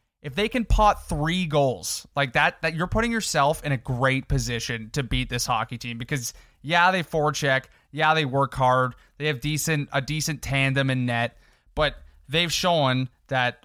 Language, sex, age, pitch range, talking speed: English, male, 20-39, 130-165 Hz, 185 wpm